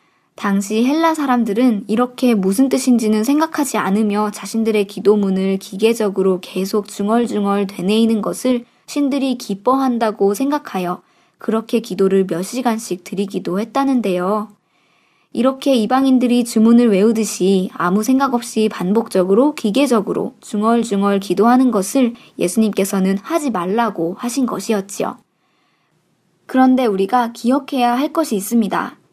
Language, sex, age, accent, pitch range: Korean, male, 20-39, native, 200-245 Hz